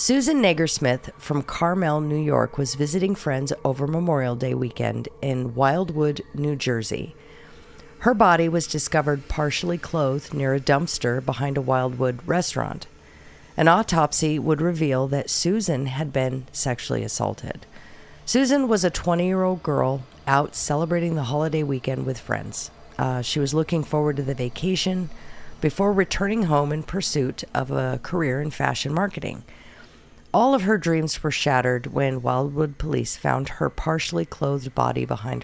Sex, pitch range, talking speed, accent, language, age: female, 130-175 Hz, 145 wpm, American, English, 50-69